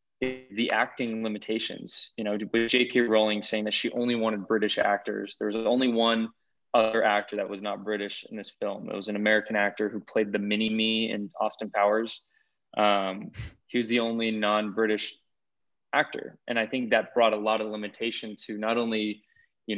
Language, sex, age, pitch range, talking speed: English, male, 20-39, 105-115 Hz, 180 wpm